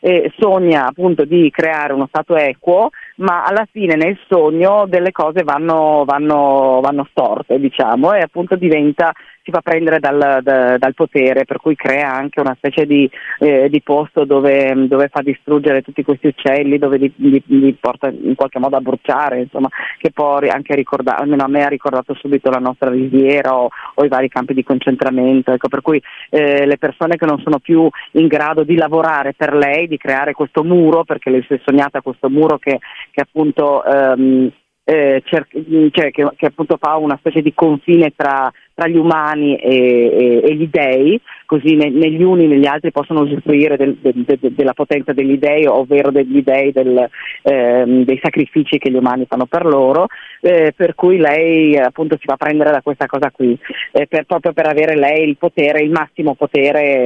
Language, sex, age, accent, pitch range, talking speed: Italian, female, 30-49, native, 135-155 Hz, 190 wpm